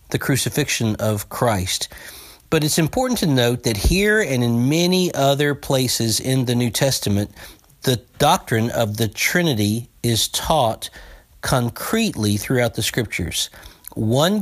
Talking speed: 135 wpm